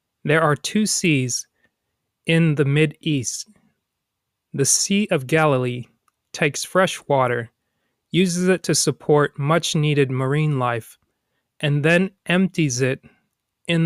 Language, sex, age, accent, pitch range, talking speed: English, male, 30-49, American, 130-170 Hz, 115 wpm